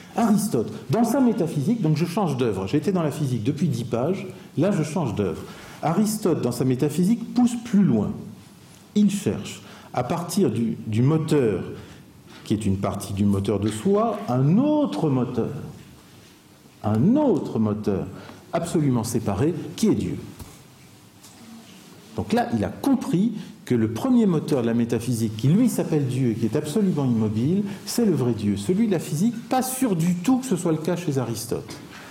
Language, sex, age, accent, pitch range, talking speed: French, male, 50-69, French, 120-185 Hz, 175 wpm